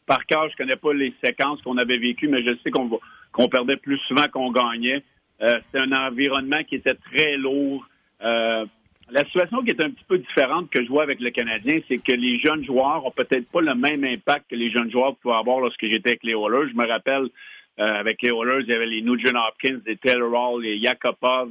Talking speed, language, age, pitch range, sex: 235 wpm, French, 50-69, 120-140 Hz, male